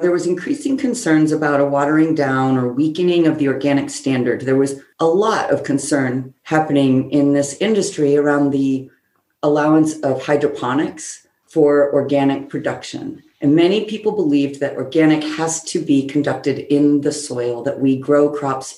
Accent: American